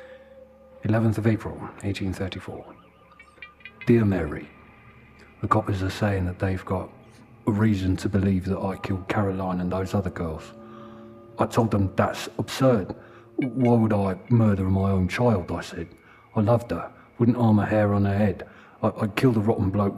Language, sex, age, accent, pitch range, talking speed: English, male, 40-59, British, 95-115 Hz, 160 wpm